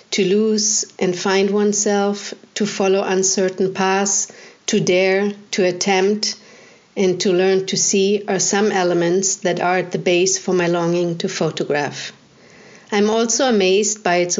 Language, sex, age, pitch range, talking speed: English, female, 50-69, 185-215 Hz, 150 wpm